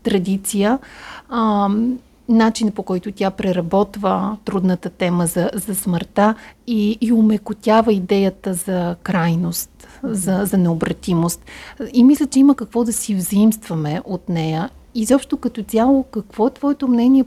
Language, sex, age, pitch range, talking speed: Bulgarian, female, 40-59, 190-245 Hz, 130 wpm